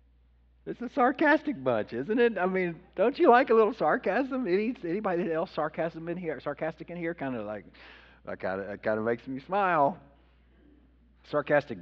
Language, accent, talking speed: English, American, 145 wpm